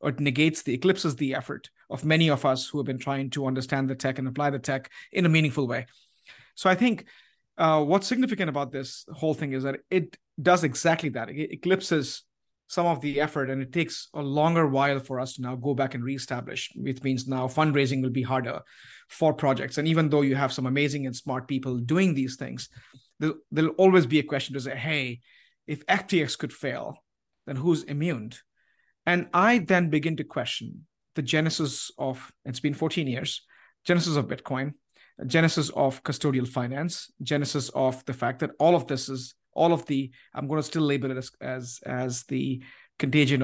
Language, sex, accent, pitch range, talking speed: English, male, Indian, 130-155 Hz, 200 wpm